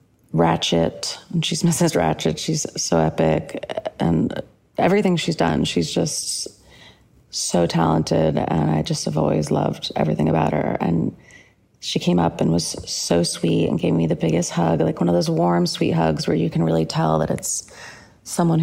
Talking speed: 175 wpm